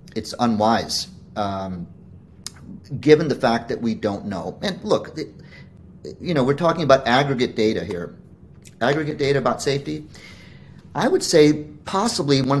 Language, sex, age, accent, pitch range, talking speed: English, male, 30-49, American, 110-135 Hz, 140 wpm